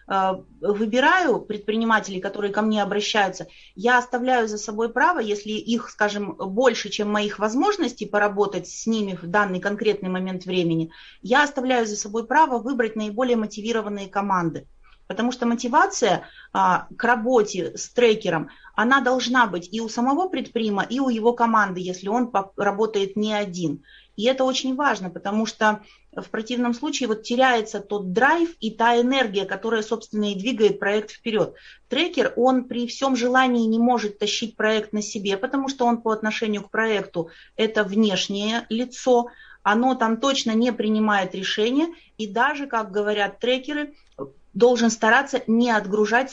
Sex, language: female, Russian